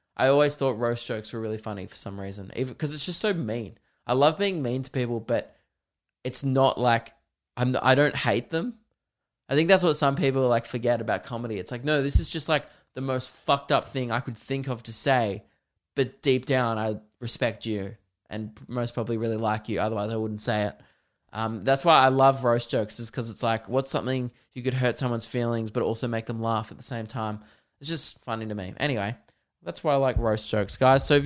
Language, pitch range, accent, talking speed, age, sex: English, 110-135 Hz, Australian, 230 wpm, 20-39, male